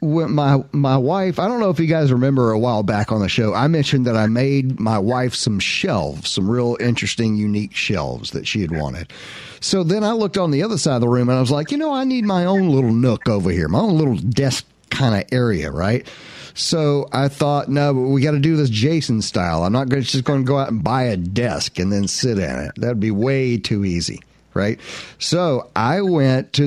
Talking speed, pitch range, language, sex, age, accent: 245 wpm, 115-145 Hz, English, male, 50-69, American